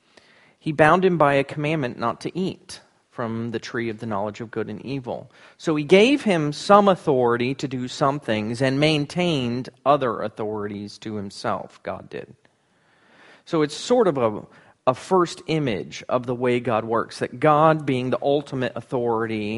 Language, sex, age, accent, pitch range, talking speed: English, male, 40-59, American, 115-150 Hz, 170 wpm